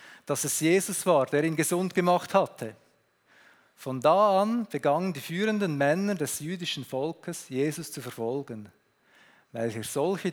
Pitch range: 130-175 Hz